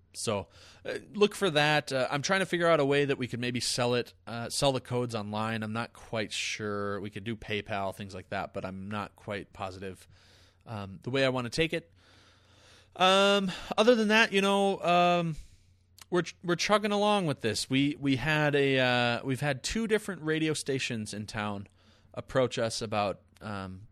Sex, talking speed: male, 195 wpm